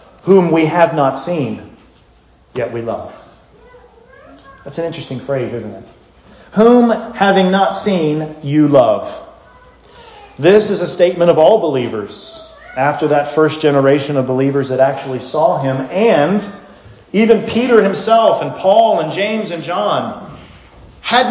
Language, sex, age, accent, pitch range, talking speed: English, male, 40-59, American, 135-195 Hz, 135 wpm